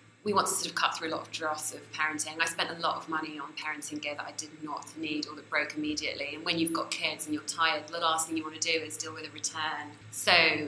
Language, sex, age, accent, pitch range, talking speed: English, female, 20-39, British, 155-180 Hz, 290 wpm